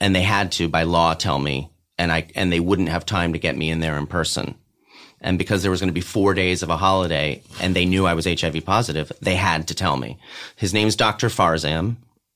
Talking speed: 245 wpm